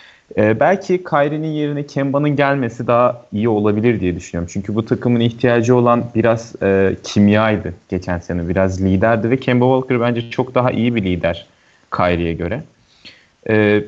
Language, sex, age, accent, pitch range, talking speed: Turkish, male, 30-49, native, 105-145 Hz, 150 wpm